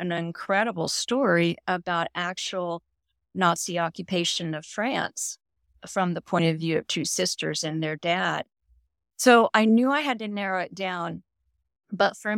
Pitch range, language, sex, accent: 170-225 Hz, English, female, American